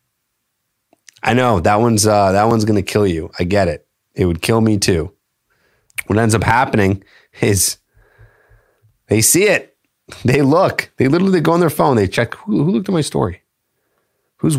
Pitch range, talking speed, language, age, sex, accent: 95-115 Hz, 180 wpm, English, 30-49, male, American